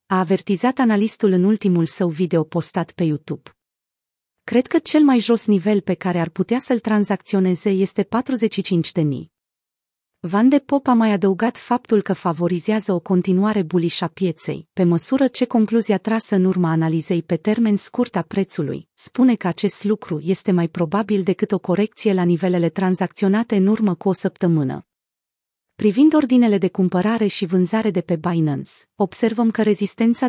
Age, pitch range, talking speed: 30-49, 175-220 Hz, 160 wpm